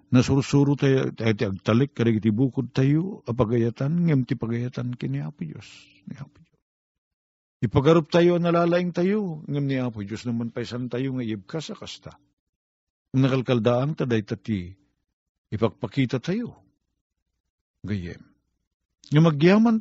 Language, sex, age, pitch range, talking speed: Filipino, male, 50-69, 95-140 Hz, 120 wpm